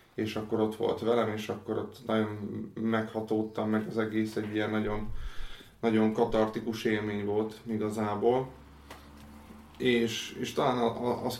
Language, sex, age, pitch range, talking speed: Hungarian, male, 30-49, 110-120 Hz, 130 wpm